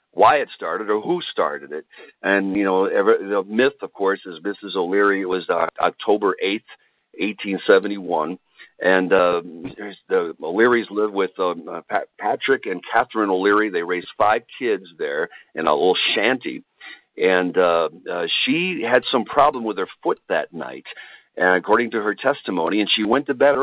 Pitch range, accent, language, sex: 105-155 Hz, American, English, male